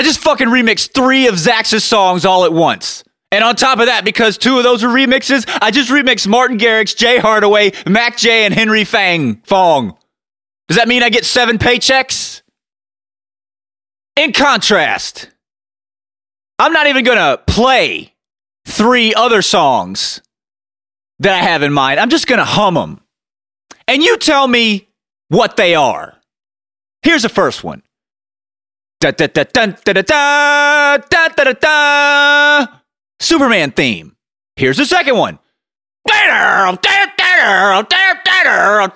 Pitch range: 180-290 Hz